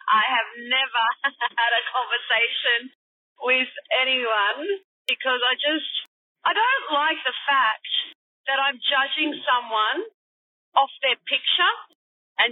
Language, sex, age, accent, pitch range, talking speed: English, female, 30-49, Australian, 250-325 Hz, 115 wpm